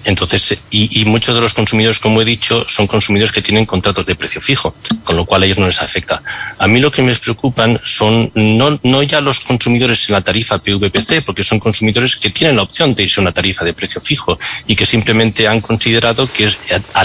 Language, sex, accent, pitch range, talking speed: Spanish, male, Spanish, 100-120 Hz, 230 wpm